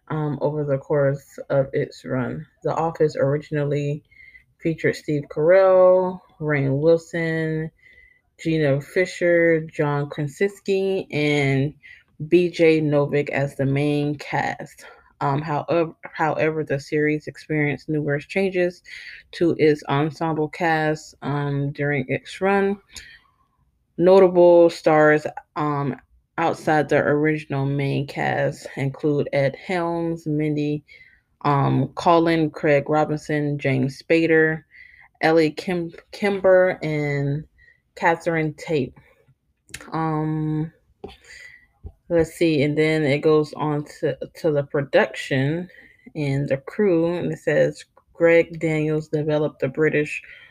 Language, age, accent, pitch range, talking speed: English, 20-39, American, 145-165 Hz, 105 wpm